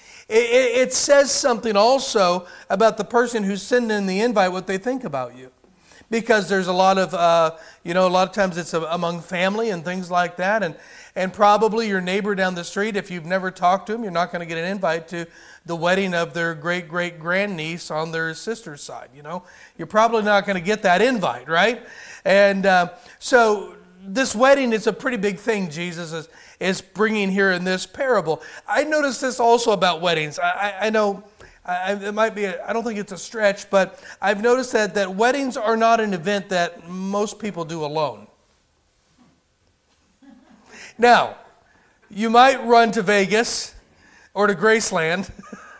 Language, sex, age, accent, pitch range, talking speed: English, male, 40-59, American, 180-225 Hz, 180 wpm